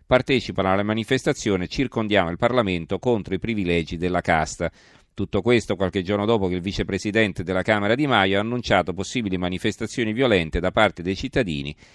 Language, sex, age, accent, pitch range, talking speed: Italian, male, 40-59, native, 90-110 Hz, 165 wpm